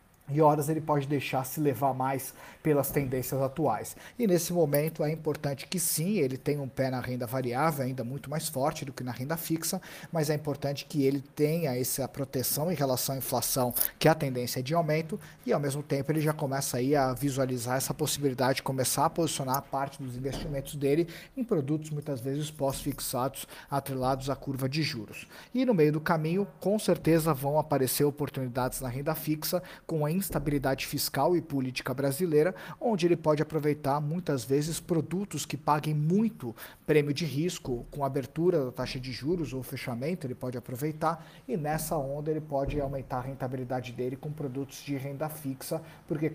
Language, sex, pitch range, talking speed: Portuguese, male, 135-155 Hz, 185 wpm